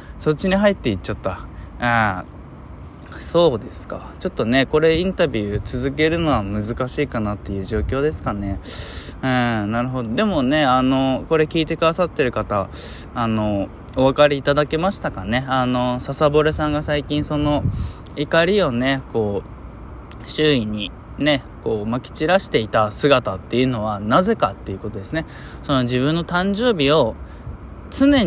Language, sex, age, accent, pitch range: Japanese, male, 20-39, native, 105-160 Hz